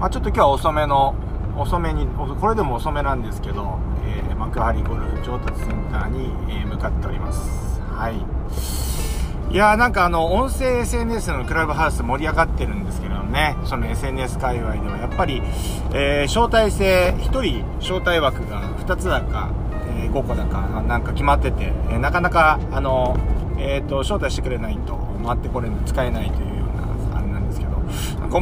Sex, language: male, Japanese